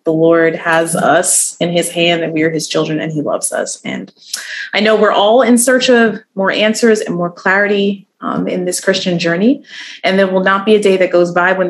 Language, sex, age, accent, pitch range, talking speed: English, female, 30-49, American, 165-220 Hz, 230 wpm